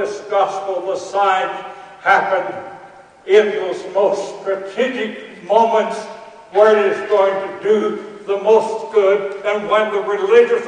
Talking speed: 130 wpm